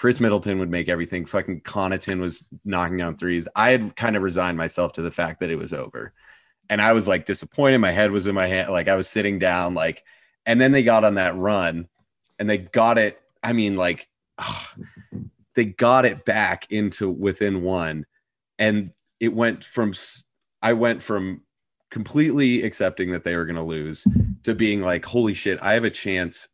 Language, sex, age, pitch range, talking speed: English, male, 30-49, 90-115 Hz, 195 wpm